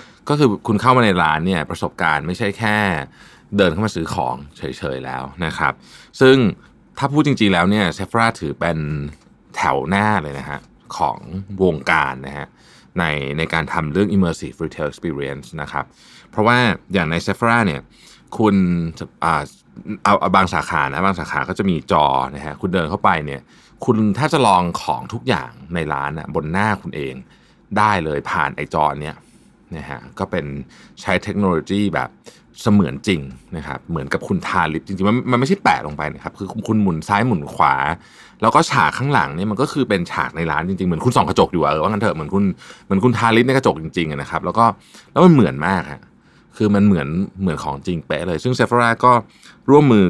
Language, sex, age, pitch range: Thai, male, 20-39, 75-105 Hz